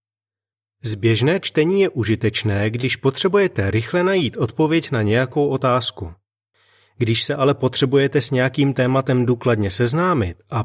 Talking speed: 125 wpm